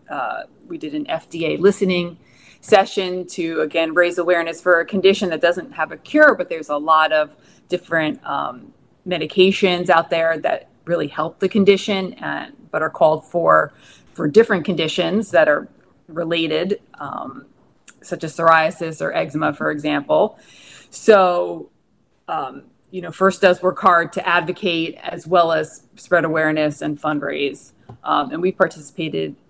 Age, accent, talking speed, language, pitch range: 30-49, American, 150 wpm, English, 160-195 Hz